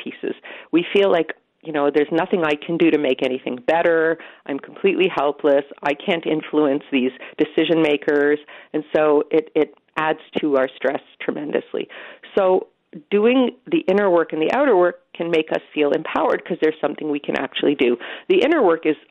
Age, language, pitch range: 40-59, English, 145-175 Hz